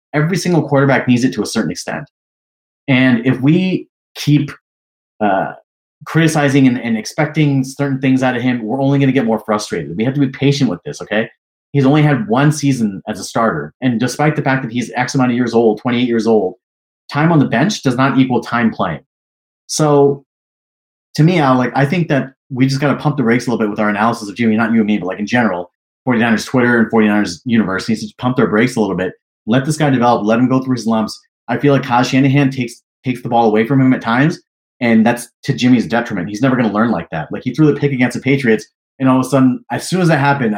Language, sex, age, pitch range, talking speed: English, male, 30-49, 115-140 Hz, 240 wpm